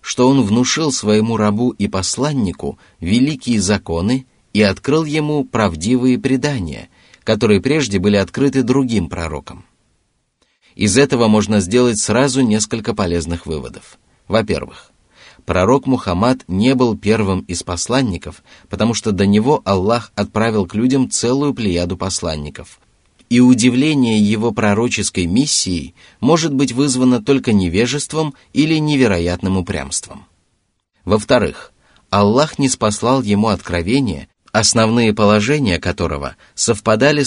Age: 30-49